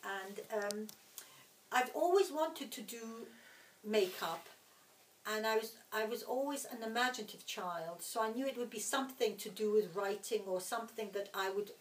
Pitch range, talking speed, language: 200-225 Hz, 170 wpm, English